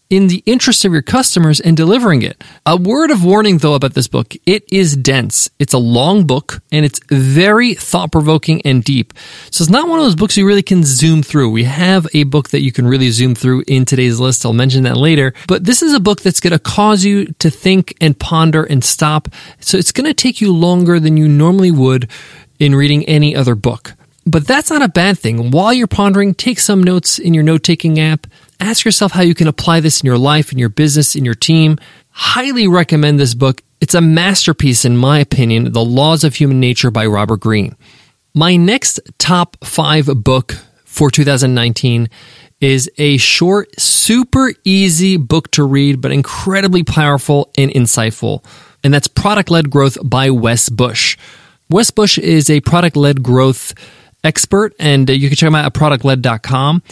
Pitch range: 130-180 Hz